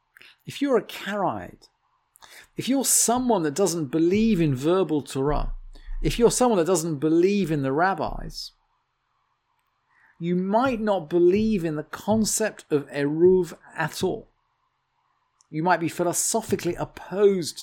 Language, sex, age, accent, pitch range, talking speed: English, male, 40-59, British, 140-200 Hz, 130 wpm